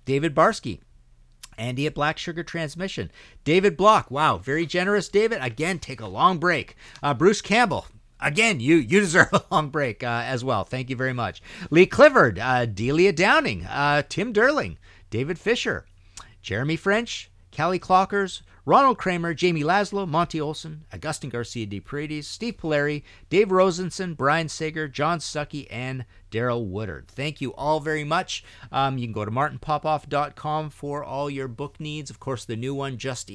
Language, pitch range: English, 110-155 Hz